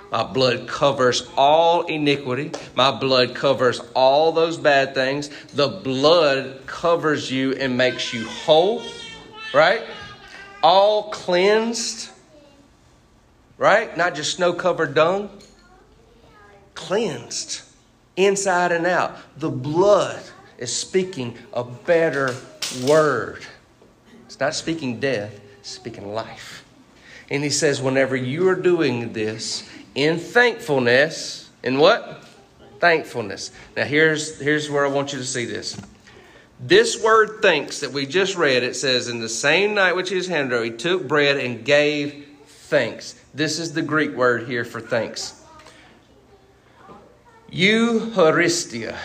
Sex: male